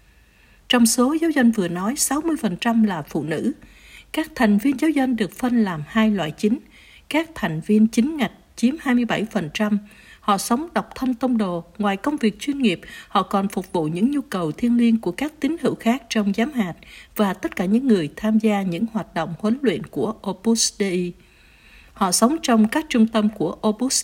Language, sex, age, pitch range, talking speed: Vietnamese, female, 60-79, 190-245 Hz, 195 wpm